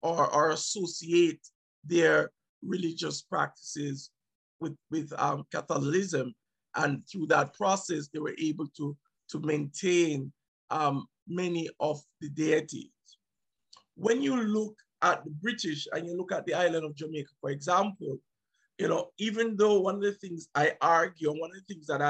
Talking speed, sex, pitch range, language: 150 wpm, male, 155-185 Hz, English